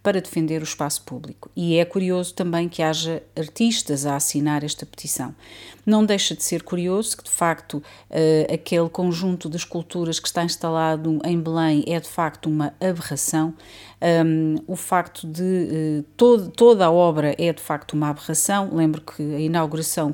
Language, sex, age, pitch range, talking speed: Portuguese, female, 40-59, 160-190 Hz, 160 wpm